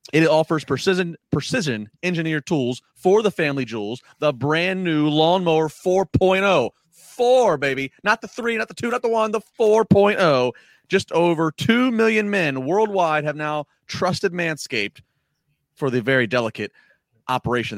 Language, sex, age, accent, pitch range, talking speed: English, male, 30-49, American, 130-185 Hz, 145 wpm